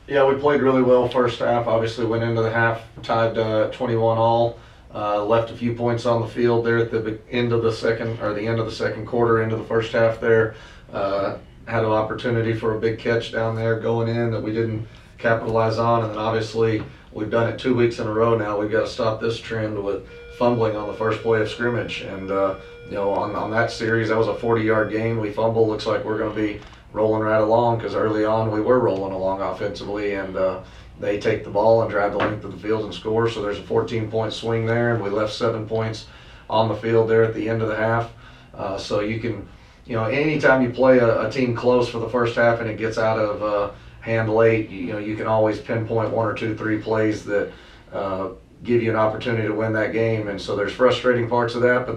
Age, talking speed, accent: 30-49, 240 wpm, American